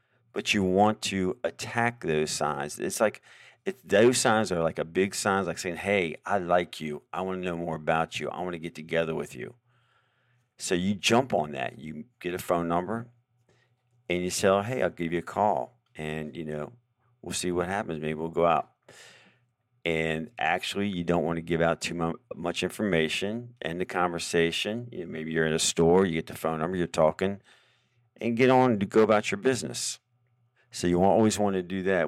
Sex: male